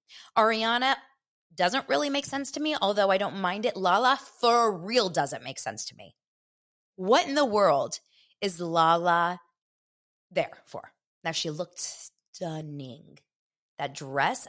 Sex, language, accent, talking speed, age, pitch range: female, English, American, 140 wpm, 20-39, 175-275 Hz